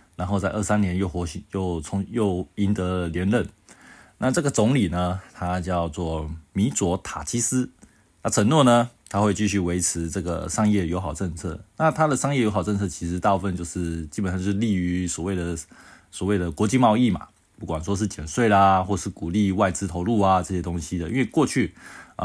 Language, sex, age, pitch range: Chinese, male, 20-39, 90-105 Hz